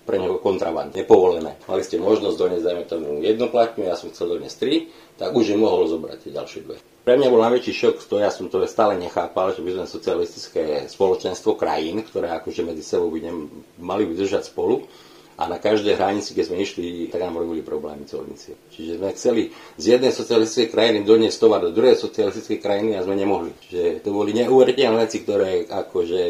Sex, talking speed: male, 190 wpm